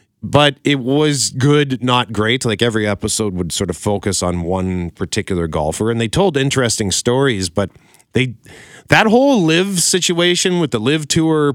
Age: 40-59